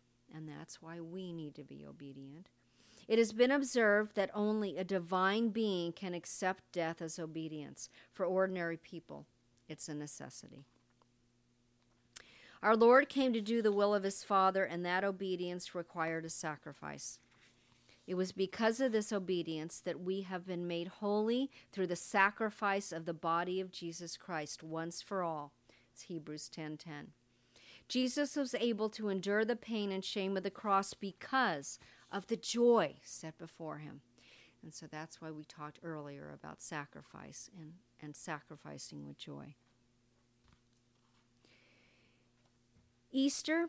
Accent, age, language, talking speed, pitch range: American, 50-69, English, 145 wpm, 120-195 Hz